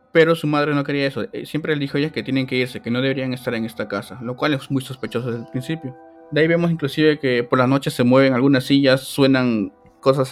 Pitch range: 130-165 Hz